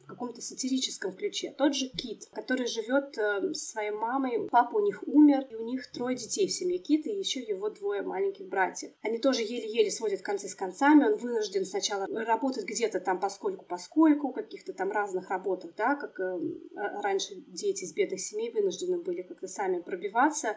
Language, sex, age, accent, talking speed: Russian, female, 20-39, native, 180 wpm